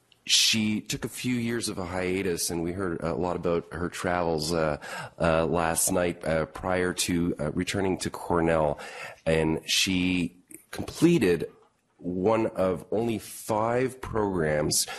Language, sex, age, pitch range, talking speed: English, male, 30-49, 75-95 Hz, 140 wpm